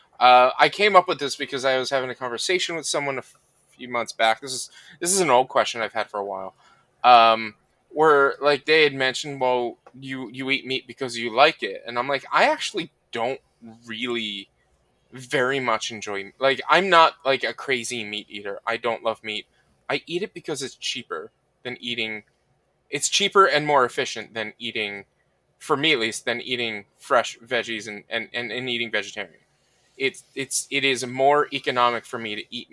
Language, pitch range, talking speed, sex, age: English, 110-135 Hz, 195 wpm, male, 20-39